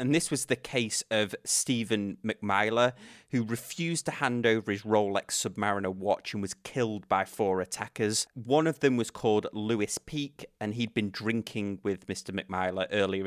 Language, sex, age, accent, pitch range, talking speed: English, male, 30-49, British, 100-125 Hz, 170 wpm